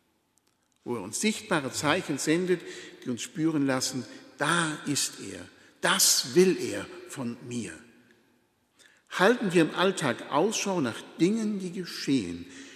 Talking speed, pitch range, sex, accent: 125 wpm, 140-185 Hz, male, German